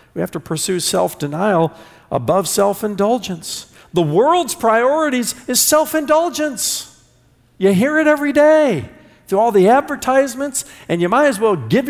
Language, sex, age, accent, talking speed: English, male, 50-69, American, 135 wpm